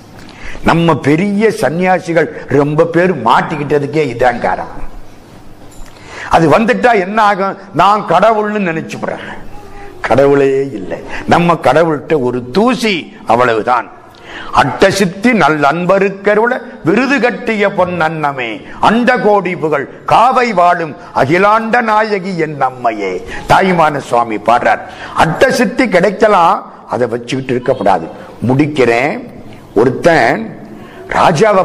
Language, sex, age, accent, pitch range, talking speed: Tamil, male, 50-69, native, 140-195 Hz, 95 wpm